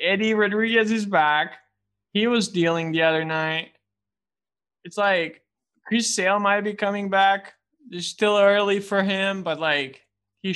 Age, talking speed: 20-39, 150 wpm